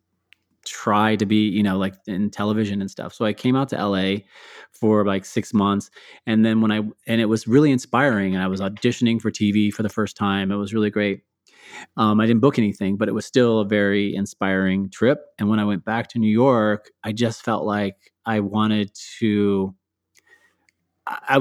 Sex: male